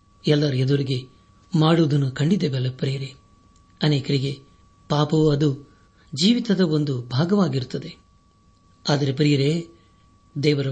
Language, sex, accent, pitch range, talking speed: Kannada, male, native, 105-160 Hz, 85 wpm